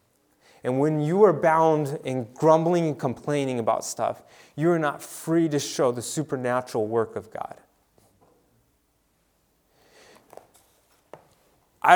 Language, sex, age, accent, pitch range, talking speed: English, male, 20-39, American, 120-160 Hz, 115 wpm